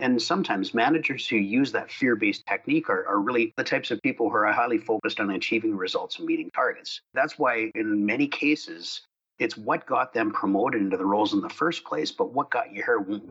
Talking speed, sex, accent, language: 215 wpm, male, American, English